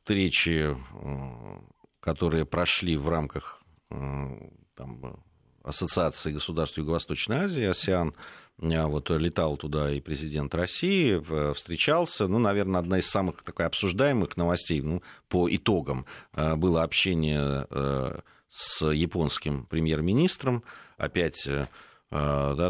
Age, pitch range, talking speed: 40-59, 75-90 Hz, 100 wpm